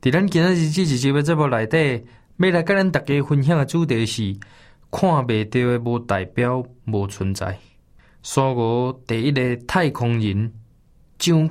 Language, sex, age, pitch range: Chinese, male, 20-39, 115-160 Hz